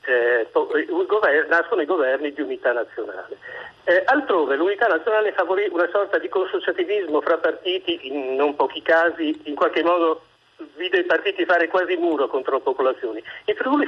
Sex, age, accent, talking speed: male, 50-69, native, 155 wpm